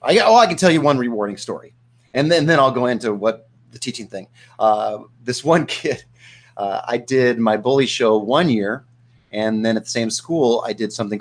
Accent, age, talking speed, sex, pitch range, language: American, 30-49, 225 wpm, male, 120-185 Hz, English